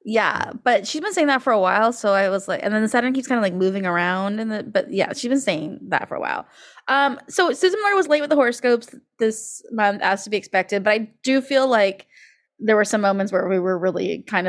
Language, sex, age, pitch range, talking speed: English, female, 20-39, 185-240 Hz, 250 wpm